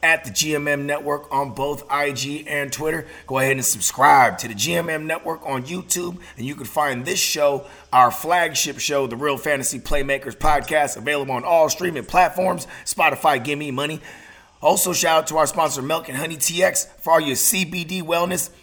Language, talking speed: English, 180 wpm